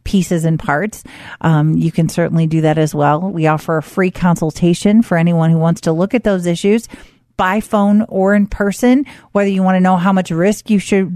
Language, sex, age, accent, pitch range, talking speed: English, female, 40-59, American, 165-195 Hz, 215 wpm